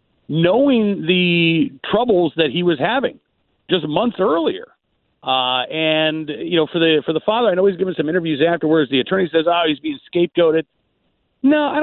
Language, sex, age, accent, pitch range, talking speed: English, male, 50-69, American, 145-190 Hz, 185 wpm